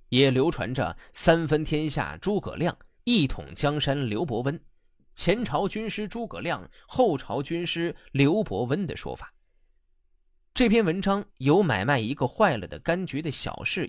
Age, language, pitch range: 20-39, Chinese, 125-195 Hz